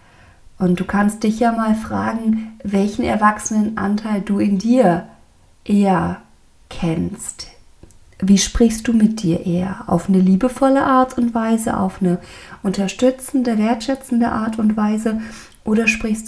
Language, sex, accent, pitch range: German, female, German, 185-225 Hz